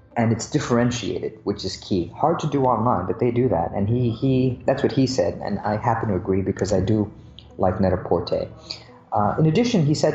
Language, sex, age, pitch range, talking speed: English, male, 30-49, 105-140 Hz, 220 wpm